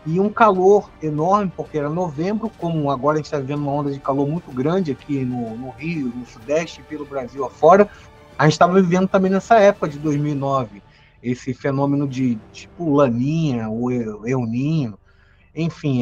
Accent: Brazilian